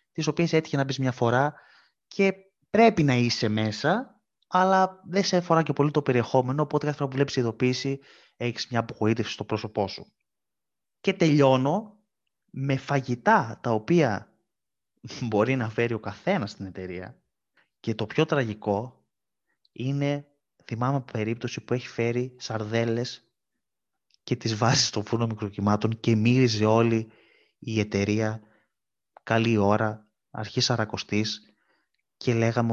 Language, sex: Greek, male